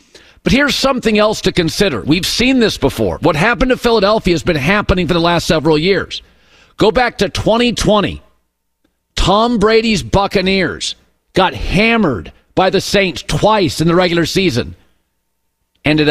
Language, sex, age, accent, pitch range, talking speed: English, male, 50-69, American, 155-210 Hz, 150 wpm